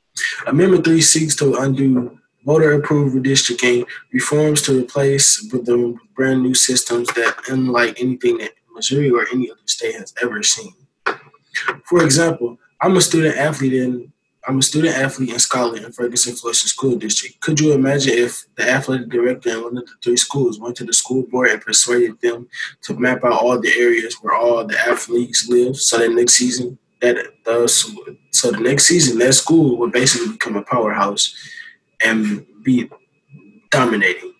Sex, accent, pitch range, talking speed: male, American, 120-145 Hz, 155 wpm